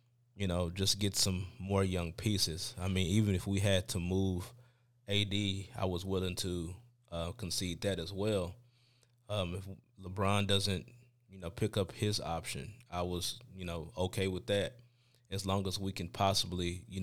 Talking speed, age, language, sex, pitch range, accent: 175 wpm, 20-39, English, male, 95-115 Hz, American